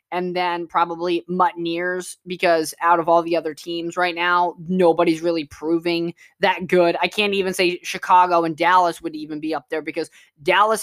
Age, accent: 20-39, American